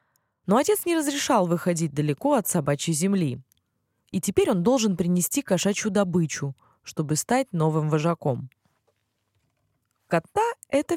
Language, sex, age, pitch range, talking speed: Russian, female, 20-39, 145-235 Hz, 120 wpm